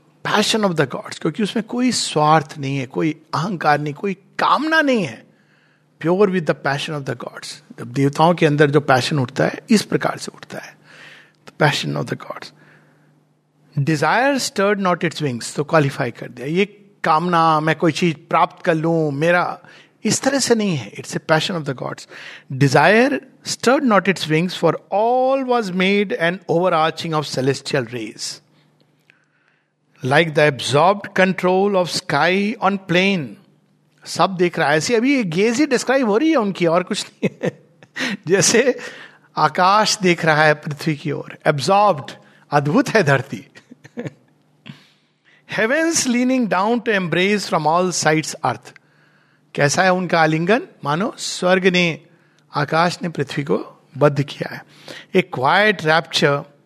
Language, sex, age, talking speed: Hindi, male, 60-79, 150 wpm